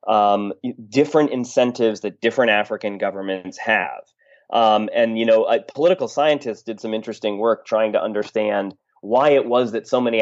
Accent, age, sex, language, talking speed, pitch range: American, 30-49, male, English, 165 wpm, 110-130 Hz